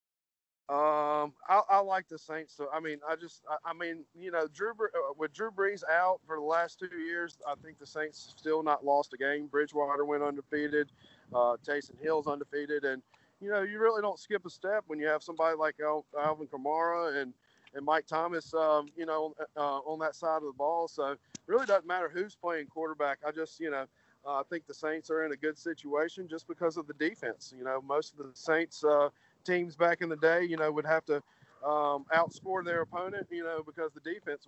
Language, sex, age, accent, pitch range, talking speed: English, male, 40-59, American, 145-170 Hz, 220 wpm